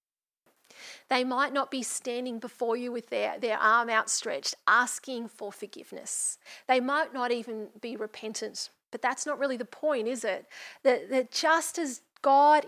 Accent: Australian